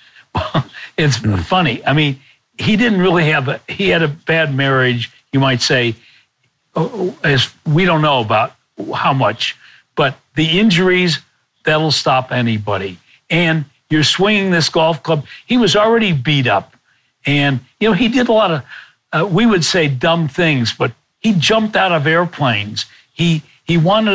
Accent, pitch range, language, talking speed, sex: American, 135-190 Hz, English, 160 wpm, male